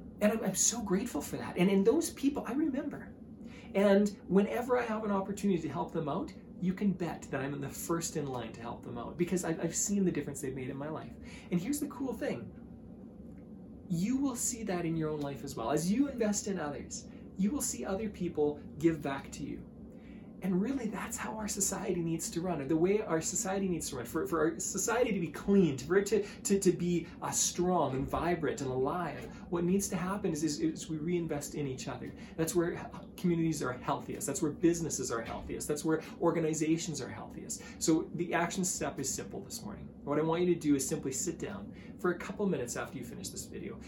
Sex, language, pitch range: male, English, 155-210 Hz